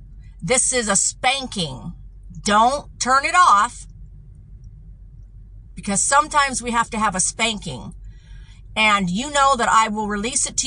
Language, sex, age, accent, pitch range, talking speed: English, female, 50-69, American, 200-255 Hz, 140 wpm